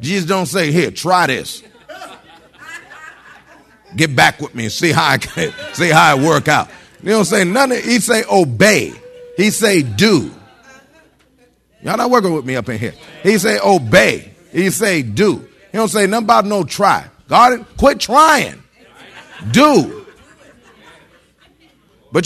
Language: English